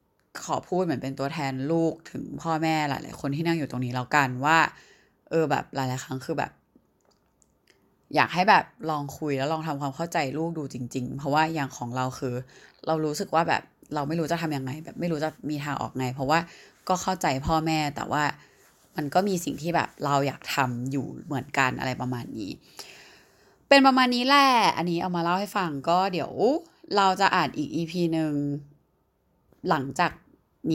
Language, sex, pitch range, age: Thai, female, 140-175 Hz, 20-39